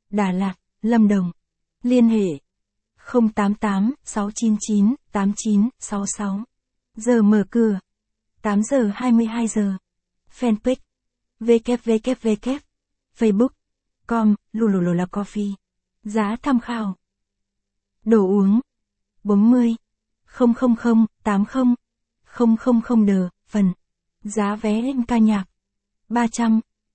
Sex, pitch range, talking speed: female, 200-235 Hz, 75 wpm